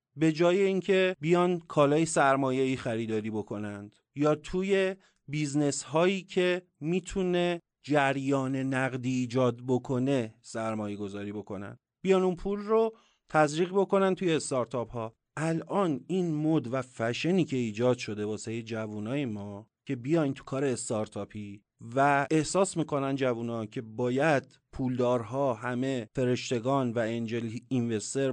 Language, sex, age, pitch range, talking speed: Persian, male, 30-49, 120-165 Hz, 125 wpm